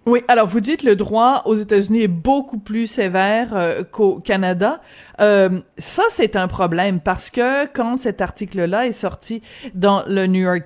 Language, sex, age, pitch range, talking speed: French, female, 30-49, 185-240 Hz, 175 wpm